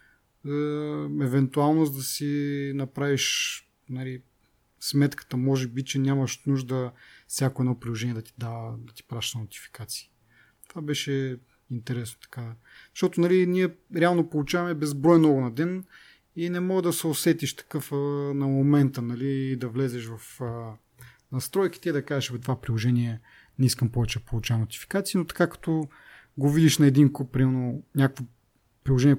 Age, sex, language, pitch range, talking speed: 30-49, male, Bulgarian, 120-150 Hz, 145 wpm